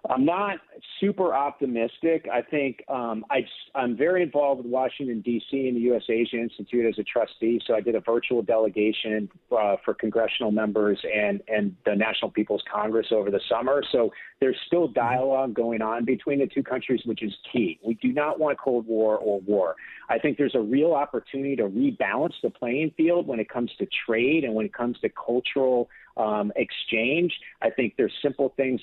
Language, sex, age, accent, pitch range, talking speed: English, male, 40-59, American, 115-145 Hz, 190 wpm